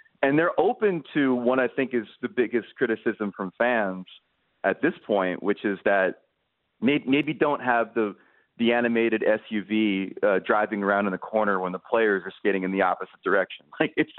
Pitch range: 95-115 Hz